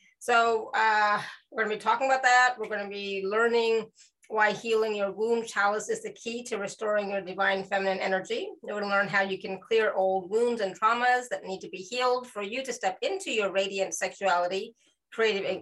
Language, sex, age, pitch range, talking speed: English, female, 30-49, 195-230 Hz, 210 wpm